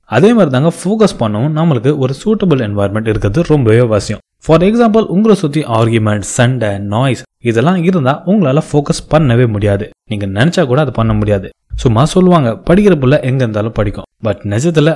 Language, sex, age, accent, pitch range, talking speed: Tamil, male, 20-39, native, 110-160 Hz, 130 wpm